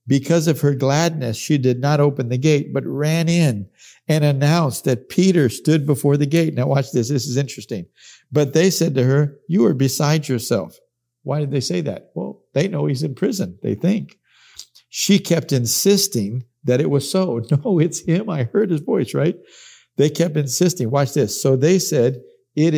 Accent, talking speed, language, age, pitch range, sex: American, 190 wpm, English, 50-69, 120-150 Hz, male